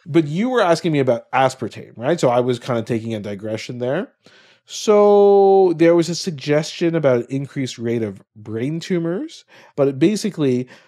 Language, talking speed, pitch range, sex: English, 175 wpm, 115-145 Hz, male